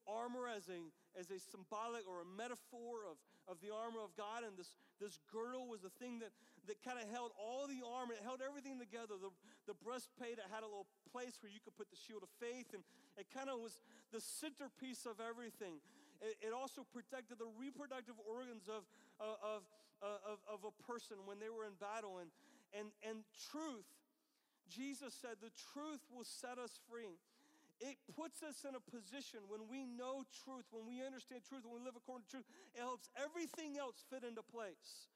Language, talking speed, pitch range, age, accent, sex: English, 200 wpm, 215-250 Hz, 40-59, American, male